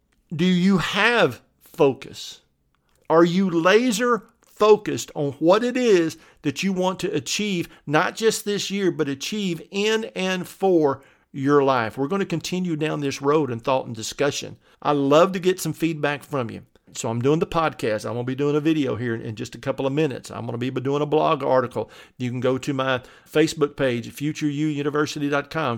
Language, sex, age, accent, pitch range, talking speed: English, male, 50-69, American, 125-165 Hz, 190 wpm